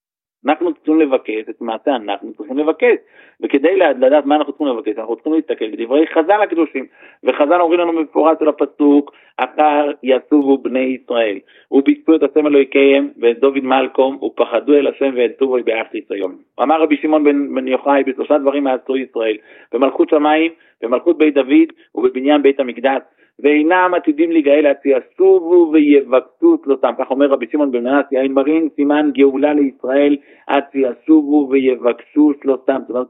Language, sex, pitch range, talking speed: Hebrew, male, 135-165 Hz, 155 wpm